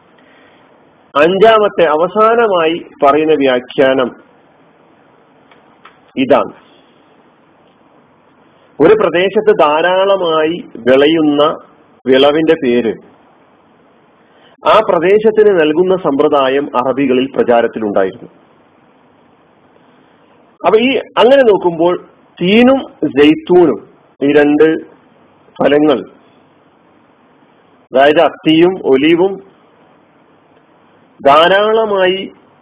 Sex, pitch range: male, 140-195 Hz